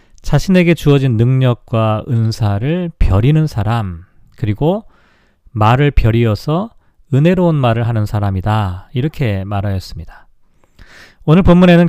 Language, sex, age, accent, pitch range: Korean, male, 40-59, native, 110-160 Hz